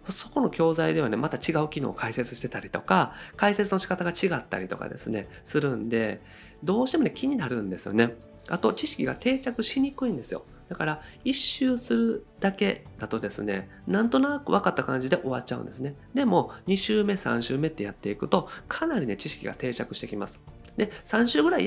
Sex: male